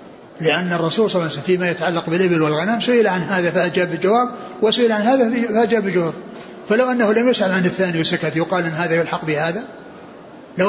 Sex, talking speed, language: male, 170 wpm, Arabic